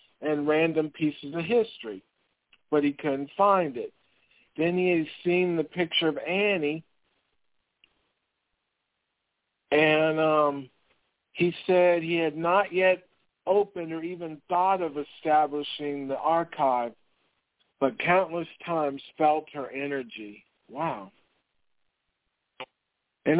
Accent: American